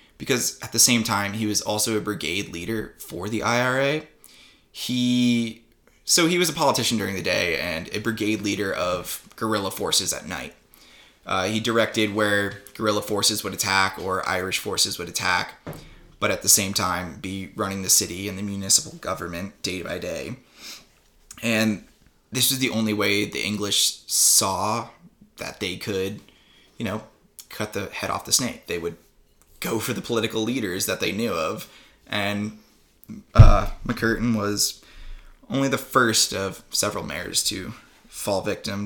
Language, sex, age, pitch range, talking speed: English, male, 20-39, 100-115 Hz, 160 wpm